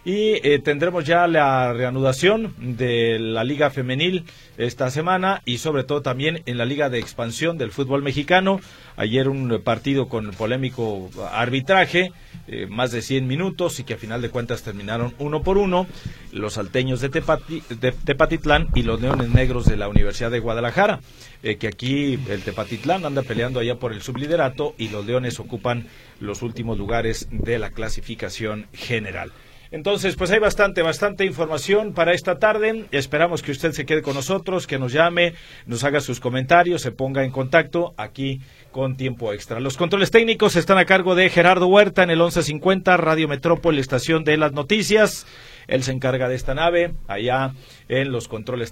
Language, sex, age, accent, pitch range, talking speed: Spanish, male, 40-59, Mexican, 125-175 Hz, 170 wpm